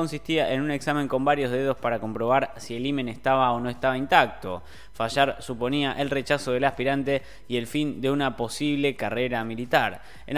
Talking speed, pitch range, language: 185 wpm, 120-145 Hz, Spanish